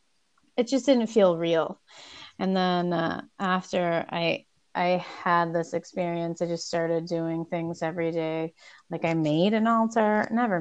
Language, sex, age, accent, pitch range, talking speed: English, female, 30-49, American, 160-180 Hz, 155 wpm